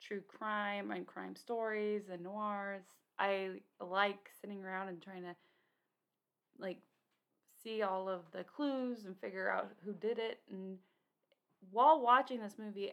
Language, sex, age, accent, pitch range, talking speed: English, female, 20-39, American, 190-225 Hz, 145 wpm